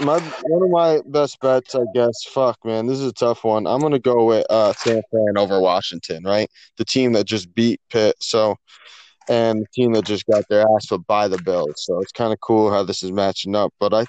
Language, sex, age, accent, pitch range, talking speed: English, male, 20-39, American, 105-125 Hz, 235 wpm